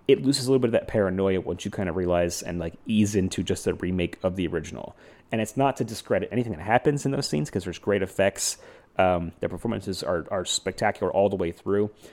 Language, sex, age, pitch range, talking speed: English, male, 30-49, 95-110 Hz, 235 wpm